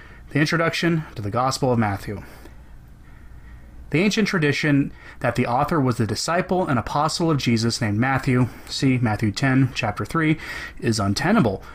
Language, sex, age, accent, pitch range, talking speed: English, male, 30-49, American, 120-165 Hz, 150 wpm